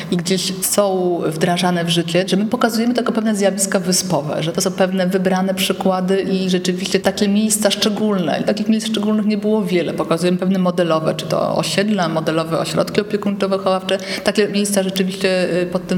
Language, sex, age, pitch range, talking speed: Polish, female, 30-49, 175-200 Hz, 165 wpm